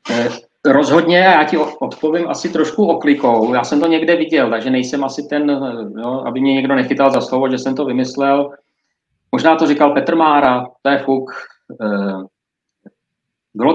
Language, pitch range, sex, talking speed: Czech, 115-150 Hz, male, 155 wpm